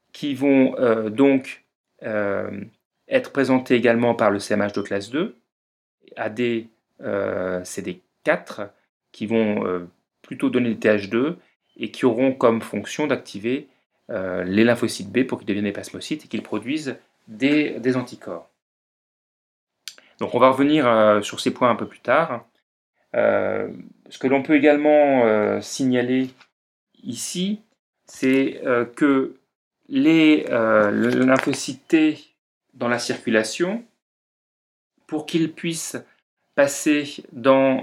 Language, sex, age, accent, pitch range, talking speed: French, male, 30-49, French, 105-135 Hz, 125 wpm